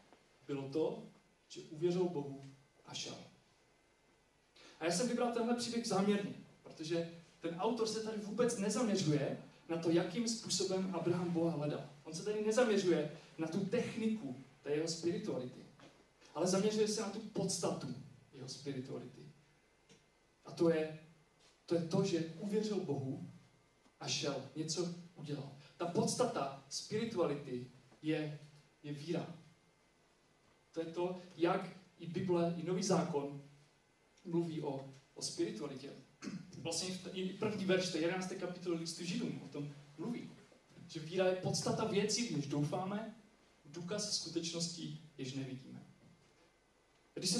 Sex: male